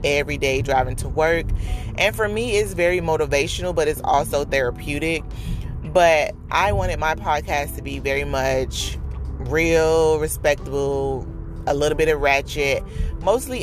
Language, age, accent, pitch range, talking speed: English, 30-49, American, 135-155 Hz, 140 wpm